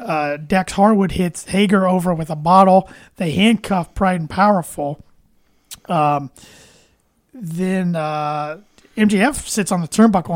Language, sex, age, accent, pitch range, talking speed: English, male, 30-49, American, 170-200 Hz, 125 wpm